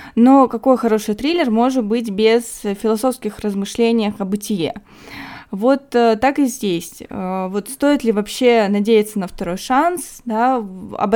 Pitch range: 210-255 Hz